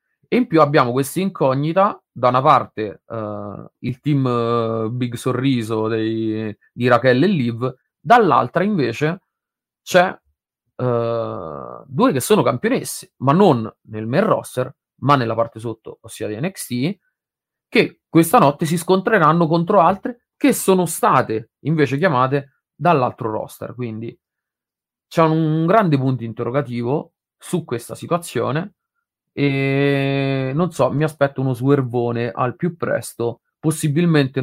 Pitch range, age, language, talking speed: 115-155 Hz, 30-49, Italian, 130 wpm